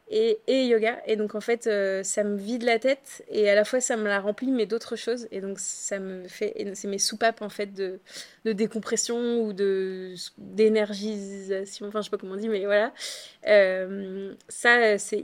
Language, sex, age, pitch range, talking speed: French, female, 20-39, 195-235 Hz, 200 wpm